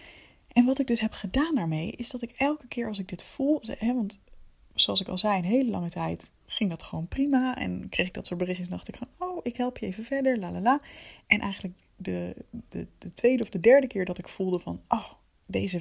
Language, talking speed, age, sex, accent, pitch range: Dutch, 245 wpm, 20-39, female, Dutch, 180-245 Hz